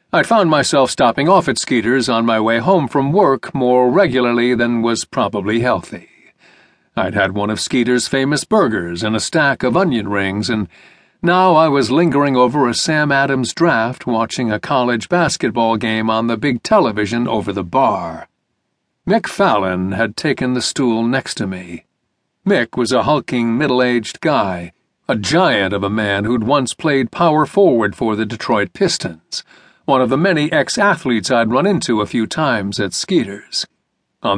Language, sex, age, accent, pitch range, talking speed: English, male, 50-69, American, 110-140 Hz, 170 wpm